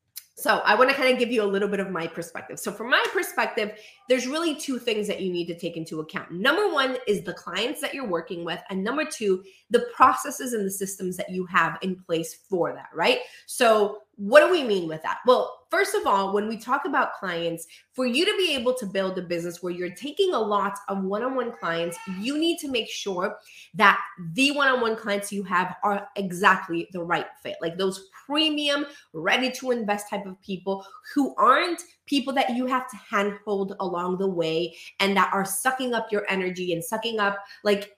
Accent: American